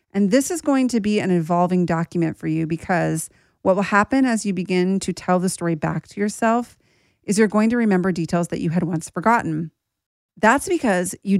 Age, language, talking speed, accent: 40-59, English, 205 wpm, American